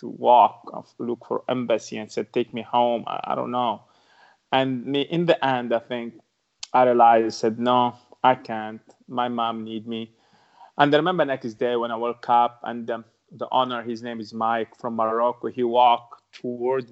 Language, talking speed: English, 185 wpm